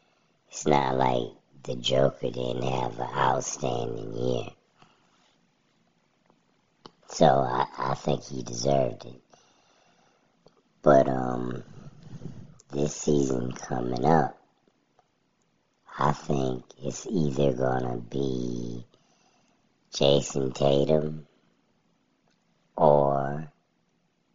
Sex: male